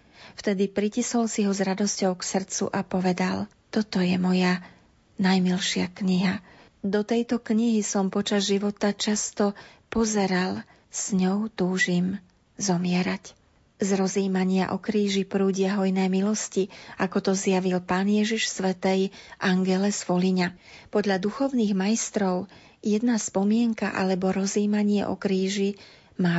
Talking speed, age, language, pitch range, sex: 120 wpm, 40-59, Slovak, 185-205 Hz, female